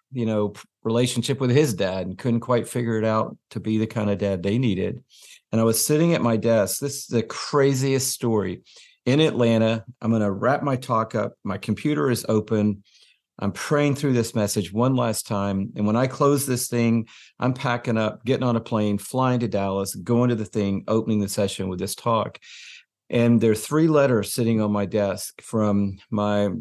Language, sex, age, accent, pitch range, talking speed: English, male, 50-69, American, 105-125 Hz, 205 wpm